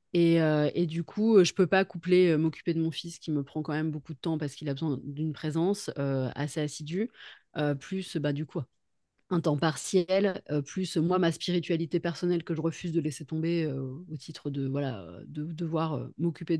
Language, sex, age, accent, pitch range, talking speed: French, female, 30-49, French, 155-185 Hz, 215 wpm